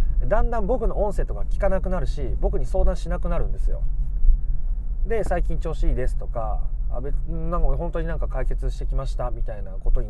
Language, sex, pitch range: Japanese, male, 120-170 Hz